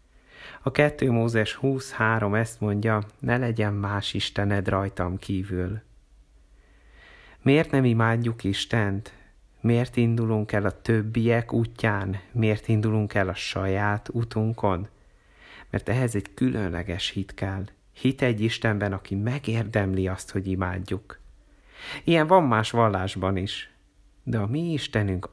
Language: Hungarian